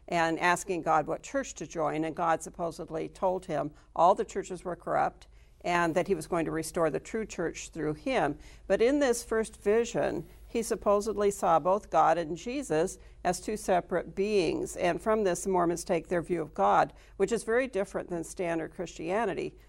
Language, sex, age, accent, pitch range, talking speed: English, female, 60-79, American, 170-215 Hz, 185 wpm